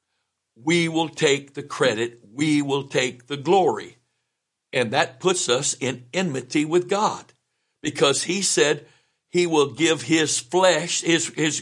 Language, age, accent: English, 60-79, American